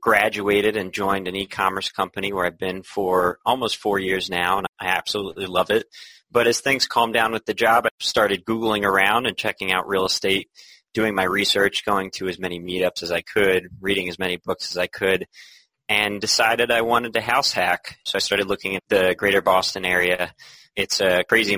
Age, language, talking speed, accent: 30-49, English, 205 wpm, American